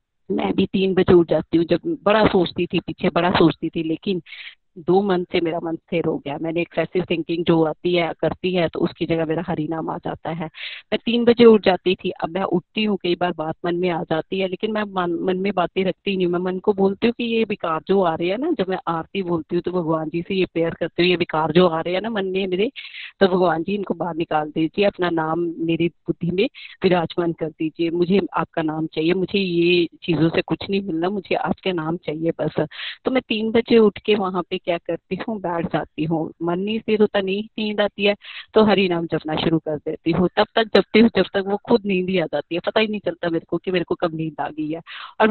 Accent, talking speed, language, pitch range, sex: native, 235 wpm, Hindi, 165-200 Hz, female